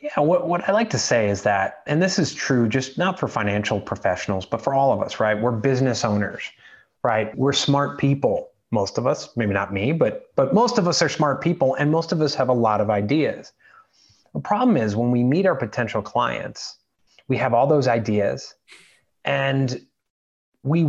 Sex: male